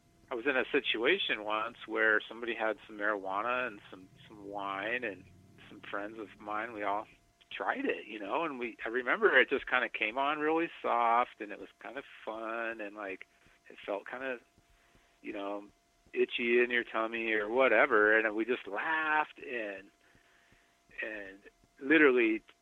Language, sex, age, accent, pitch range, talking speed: English, male, 40-59, American, 110-145 Hz, 170 wpm